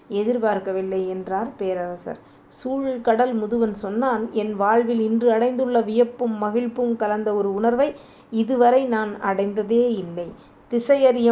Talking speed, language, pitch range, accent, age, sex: 105 wpm, Tamil, 210-245 Hz, native, 20-39, female